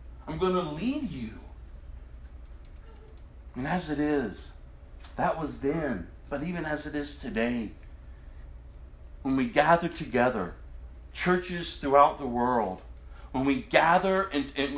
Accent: American